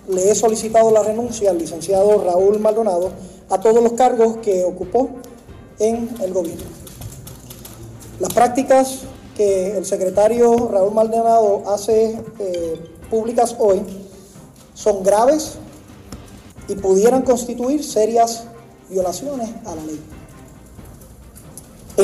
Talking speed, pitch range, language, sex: 110 wpm, 195-240 Hz, Spanish, male